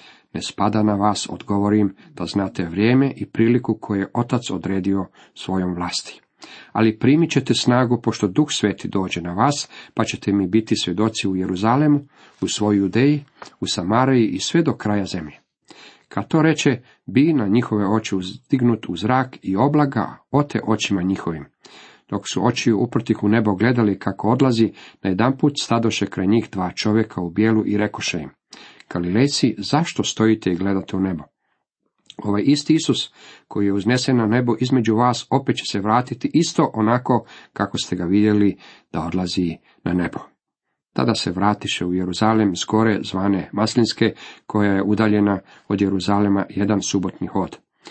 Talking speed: 160 wpm